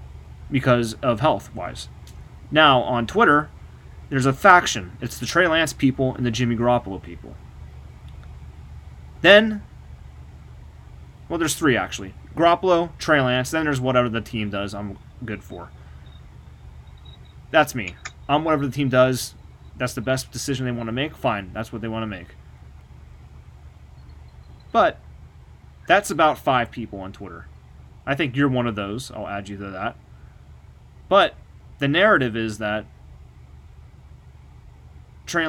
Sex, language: male, English